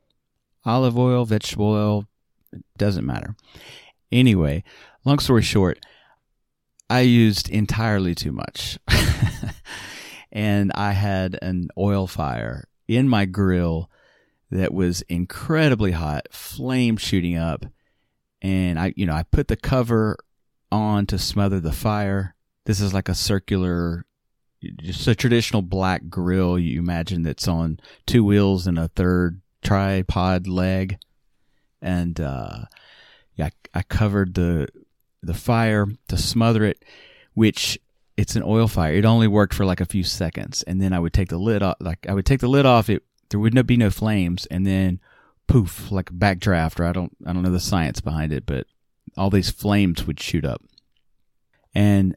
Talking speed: 155 wpm